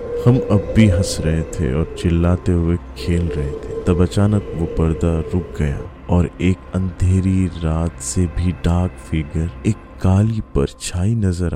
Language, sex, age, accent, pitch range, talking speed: Hindi, male, 30-49, native, 85-95 Hz, 155 wpm